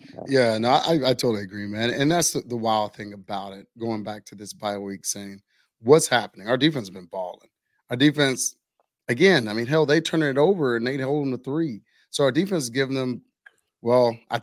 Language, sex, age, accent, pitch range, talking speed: English, male, 30-49, American, 115-145 Hz, 220 wpm